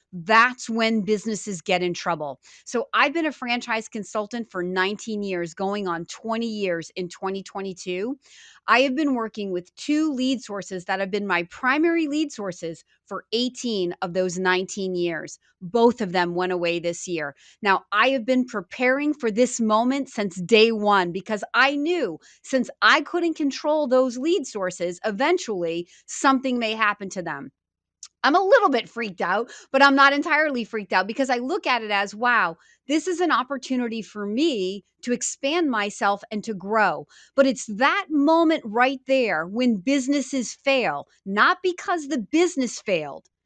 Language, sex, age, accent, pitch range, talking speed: English, female, 30-49, American, 195-275 Hz, 165 wpm